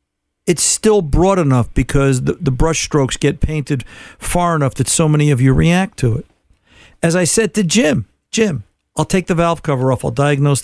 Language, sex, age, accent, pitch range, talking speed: English, male, 50-69, American, 130-165 Hz, 195 wpm